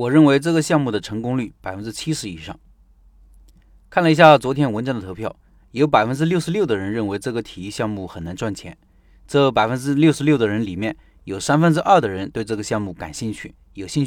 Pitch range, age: 110-150 Hz, 30-49